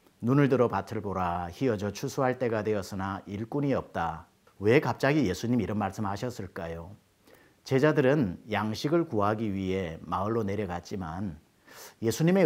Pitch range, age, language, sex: 95-120 Hz, 40-59, Korean, male